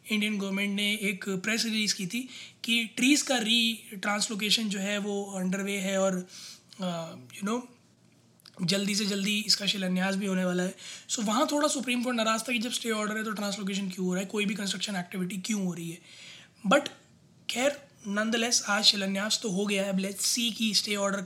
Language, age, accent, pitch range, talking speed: Hindi, 20-39, native, 185-220 Hz, 200 wpm